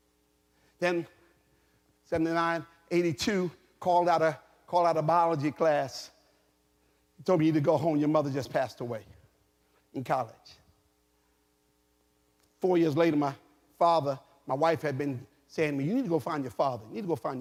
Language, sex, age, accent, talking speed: English, male, 40-59, American, 160 wpm